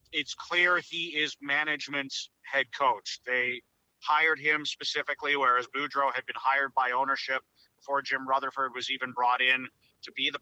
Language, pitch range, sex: English, 135-155 Hz, male